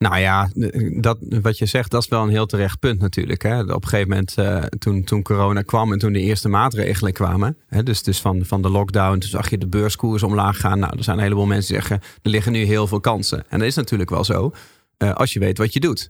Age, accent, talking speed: 40-59, Dutch, 270 wpm